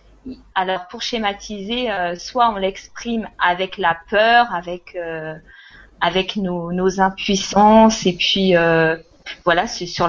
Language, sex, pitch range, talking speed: French, female, 195-260 Hz, 130 wpm